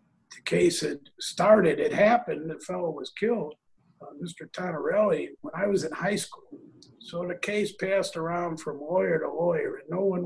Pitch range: 165-215 Hz